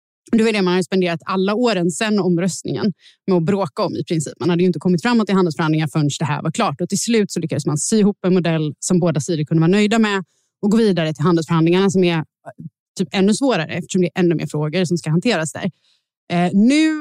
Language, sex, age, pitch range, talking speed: Swedish, female, 30-49, 170-215 Hz, 235 wpm